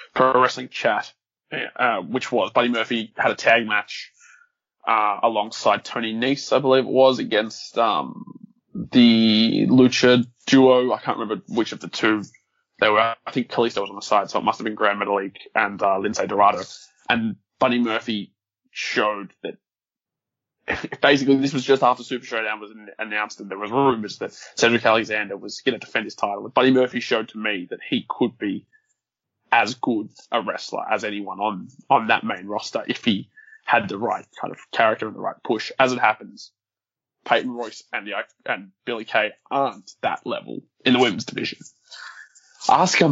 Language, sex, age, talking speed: English, male, 20-39, 180 wpm